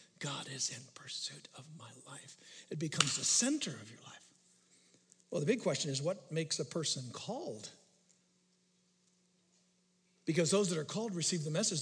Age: 60-79